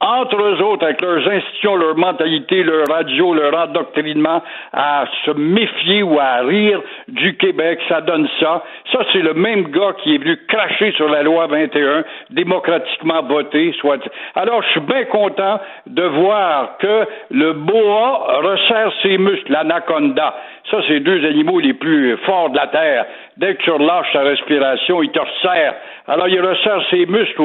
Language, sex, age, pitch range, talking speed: French, male, 60-79, 160-215 Hz, 175 wpm